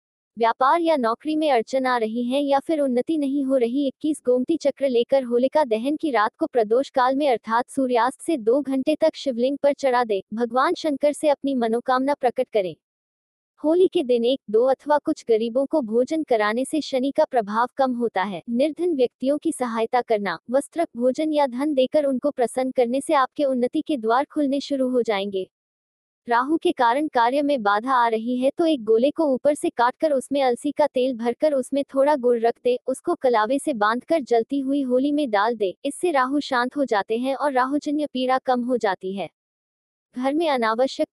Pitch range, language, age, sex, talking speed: 235-290 Hz, Hindi, 20-39, female, 195 wpm